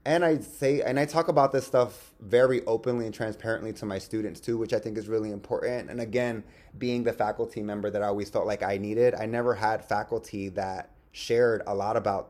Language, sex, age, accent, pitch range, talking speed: English, male, 20-39, American, 100-120 Hz, 220 wpm